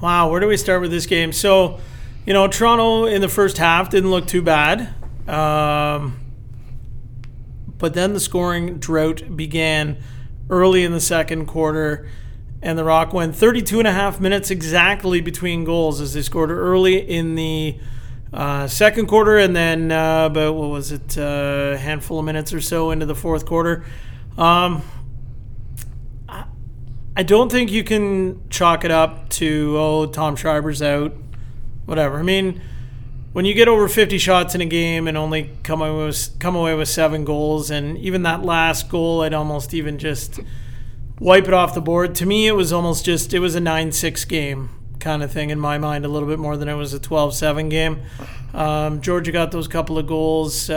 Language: English